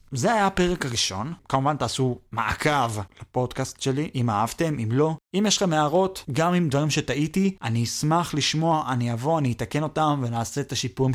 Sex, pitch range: male, 125-170 Hz